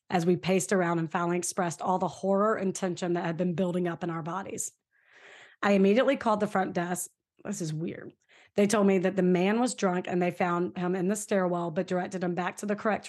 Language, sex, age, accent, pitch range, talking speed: English, female, 30-49, American, 175-195 Hz, 235 wpm